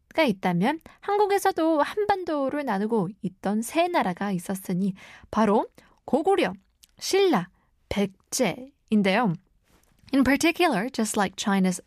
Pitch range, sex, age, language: 195-295 Hz, female, 20-39, Korean